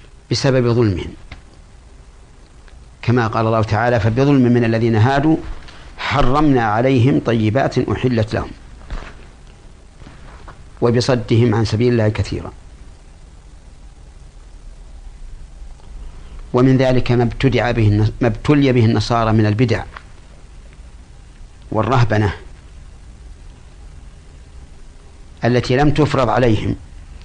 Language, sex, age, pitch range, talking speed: Arabic, male, 50-69, 75-120 Hz, 75 wpm